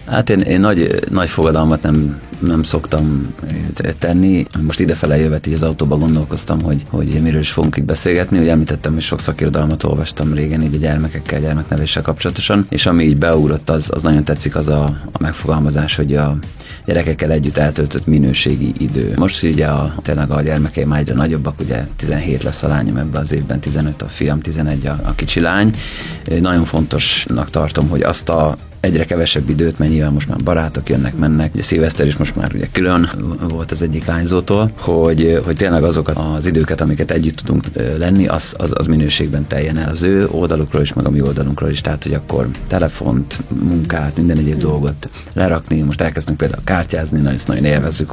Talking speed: 180 wpm